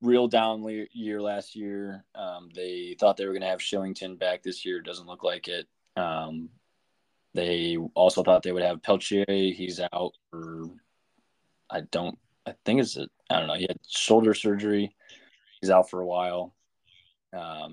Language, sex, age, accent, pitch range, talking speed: English, male, 20-39, American, 85-100 Hz, 175 wpm